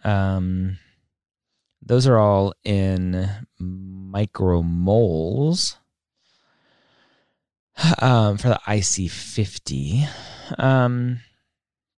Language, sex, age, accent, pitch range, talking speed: English, male, 30-49, American, 90-115 Hz, 55 wpm